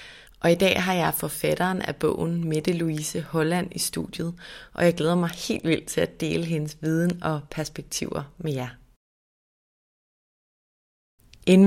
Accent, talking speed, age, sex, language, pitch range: native, 150 wpm, 30-49, female, Danish, 160-185 Hz